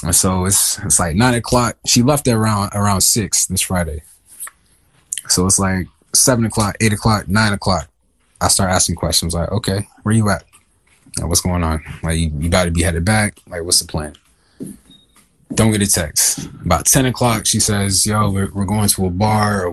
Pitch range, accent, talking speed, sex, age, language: 85-110 Hz, American, 200 wpm, male, 20-39, English